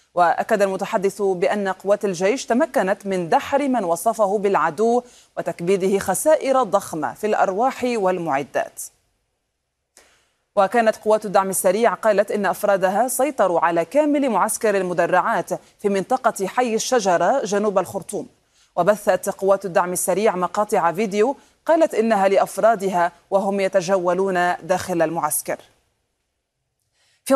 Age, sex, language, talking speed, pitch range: 30-49, female, Arabic, 105 wpm, 185-225 Hz